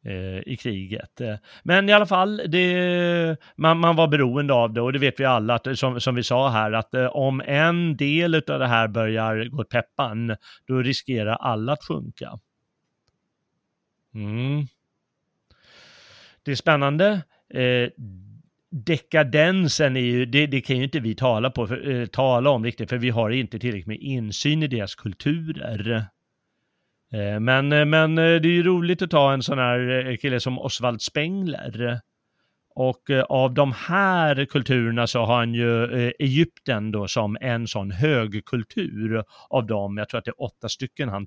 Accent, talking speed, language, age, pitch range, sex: native, 150 wpm, Swedish, 30-49, 115-145 Hz, male